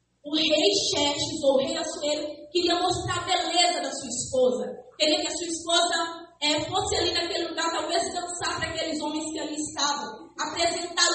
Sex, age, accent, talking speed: female, 20-39, Brazilian, 180 wpm